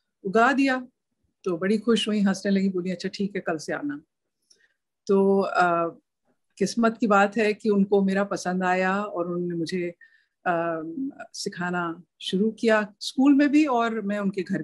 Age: 50-69